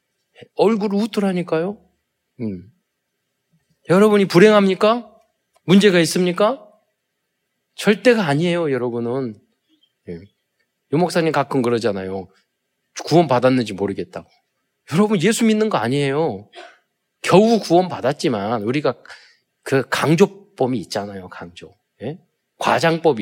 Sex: male